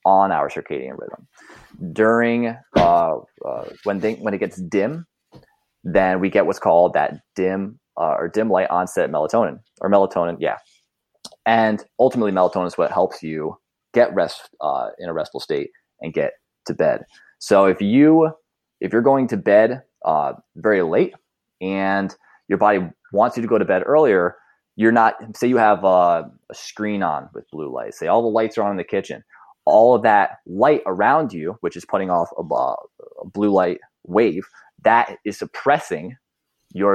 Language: English